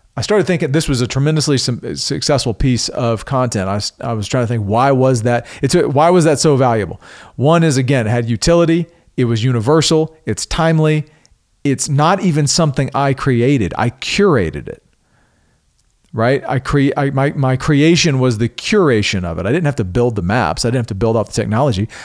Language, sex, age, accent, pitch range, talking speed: English, male, 40-59, American, 115-150 Hz, 195 wpm